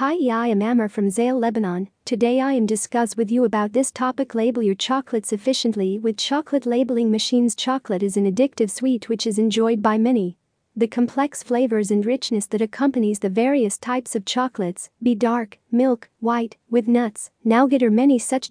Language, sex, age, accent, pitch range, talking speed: English, female, 40-59, American, 220-260 Hz, 180 wpm